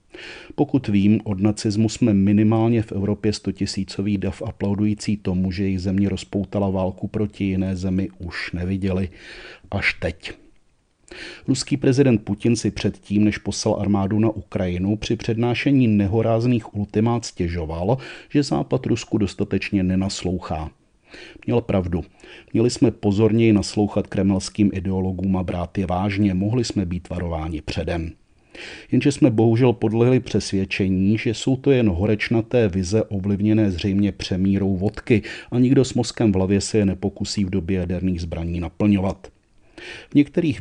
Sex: male